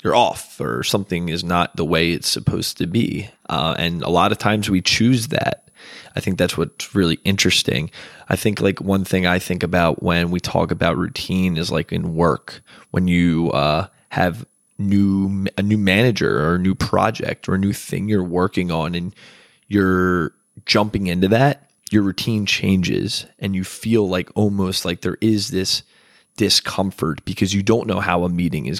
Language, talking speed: English, 185 wpm